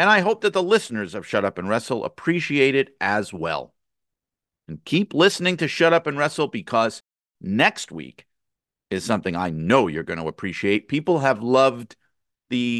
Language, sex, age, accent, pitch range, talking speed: English, male, 50-69, American, 105-160 Hz, 180 wpm